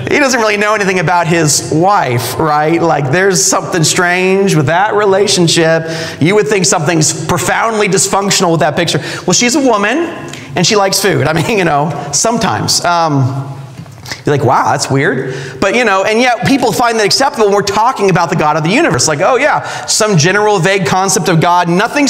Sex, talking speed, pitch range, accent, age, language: male, 195 wpm, 145-195 Hz, American, 30-49, English